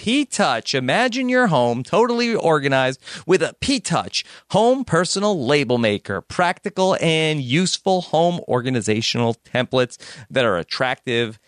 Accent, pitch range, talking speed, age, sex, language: American, 130-195 Hz, 115 wpm, 40-59, male, English